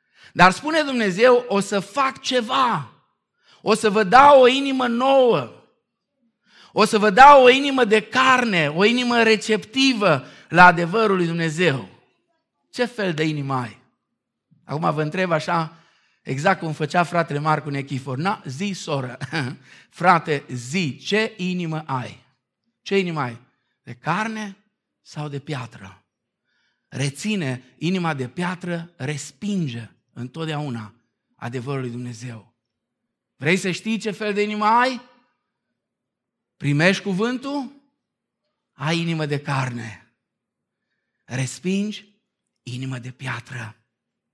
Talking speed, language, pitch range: 120 wpm, Romanian, 130-210 Hz